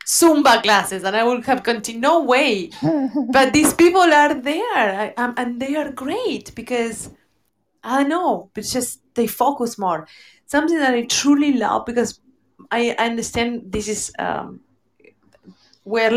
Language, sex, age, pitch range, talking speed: English, female, 30-49, 215-260 Hz, 150 wpm